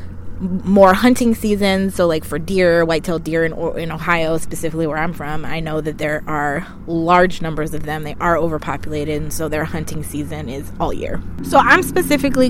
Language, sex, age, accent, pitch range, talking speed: English, female, 20-39, American, 155-200 Hz, 185 wpm